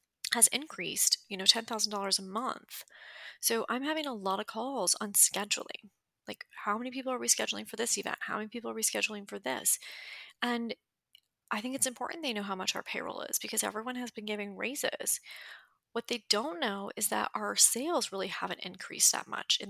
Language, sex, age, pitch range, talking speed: English, female, 30-49, 200-250 Hz, 200 wpm